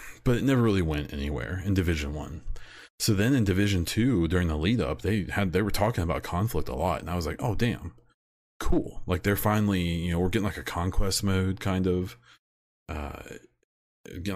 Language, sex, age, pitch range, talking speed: English, male, 30-49, 80-100 Hz, 205 wpm